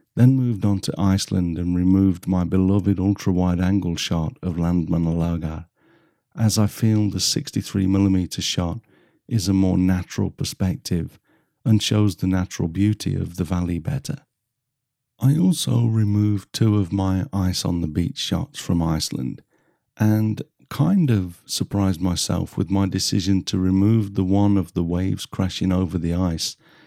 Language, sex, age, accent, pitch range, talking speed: English, male, 50-69, British, 90-120 Hz, 140 wpm